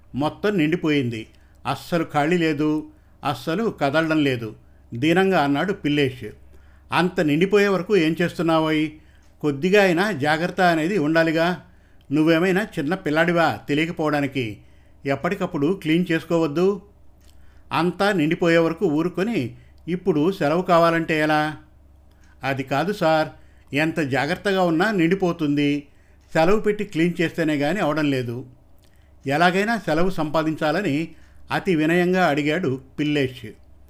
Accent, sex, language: native, male, Telugu